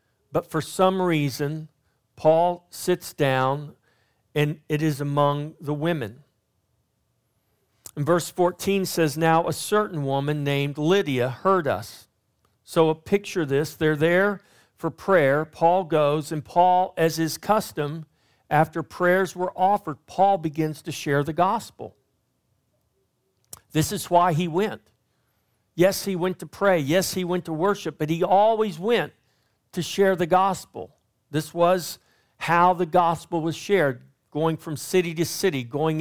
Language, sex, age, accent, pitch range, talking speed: English, male, 50-69, American, 145-185 Hz, 145 wpm